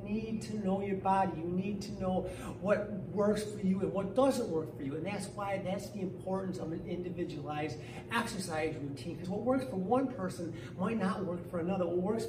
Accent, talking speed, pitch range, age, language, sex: American, 210 wpm, 160-200 Hz, 40-59, English, male